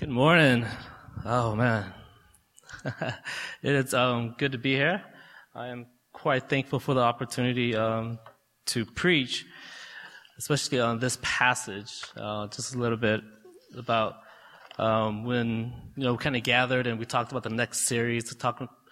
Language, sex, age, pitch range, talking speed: English, male, 20-39, 115-130 Hz, 150 wpm